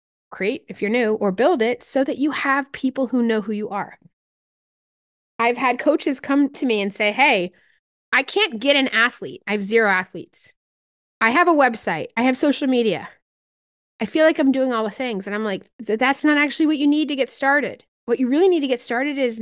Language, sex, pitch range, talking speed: English, female, 230-285 Hz, 220 wpm